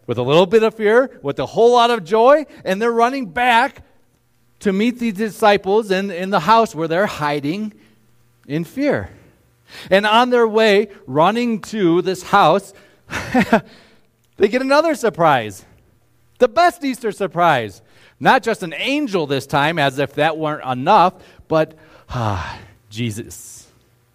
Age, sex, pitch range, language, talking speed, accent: 40-59, male, 120-200 Hz, English, 145 wpm, American